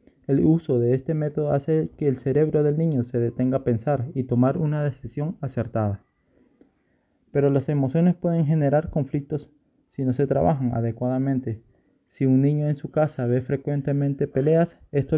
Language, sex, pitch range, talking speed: Spanish, male, 125-145 Hz, 160 wpm